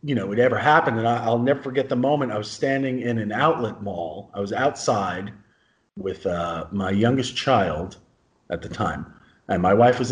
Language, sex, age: English, male, 30-49